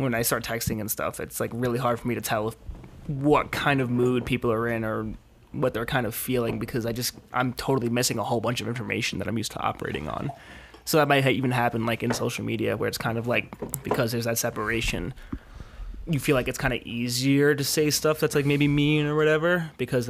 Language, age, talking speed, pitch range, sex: English, 20-39, 240 wpm, 115-140 Hz, male